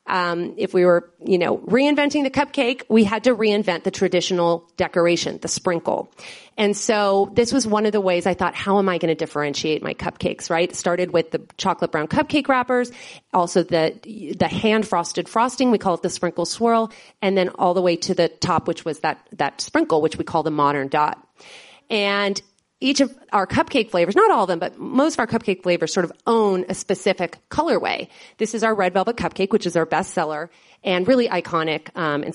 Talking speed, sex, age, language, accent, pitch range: 210 wpm, female, 30-49, English, American, 175-240 Hz